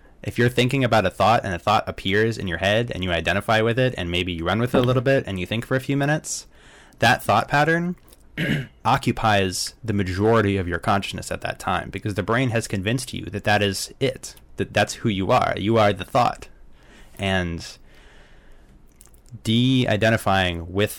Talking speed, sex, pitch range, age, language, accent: 195 wpm, male, 90-115 Hz, 20-39, English, American